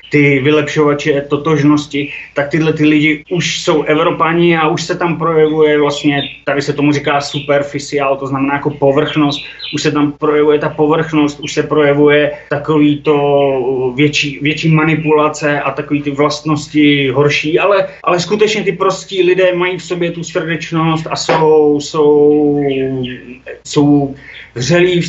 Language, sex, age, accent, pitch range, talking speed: Czech, male, 30-49, native, 145-160 Hz, 145 wpm